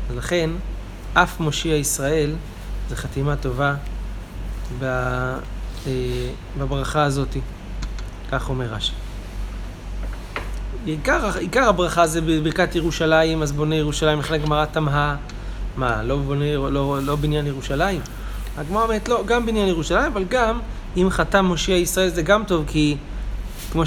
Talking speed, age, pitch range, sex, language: 120 wpm, 30-49, 95-165 Hz, male, Hebrew